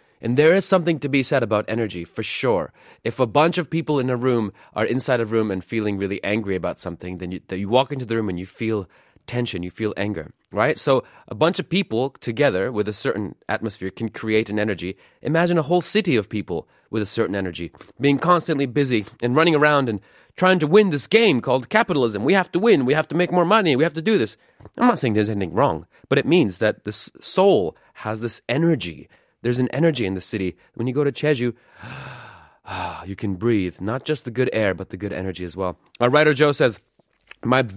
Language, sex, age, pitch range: Korean, male, 30-49, 100-150 Hz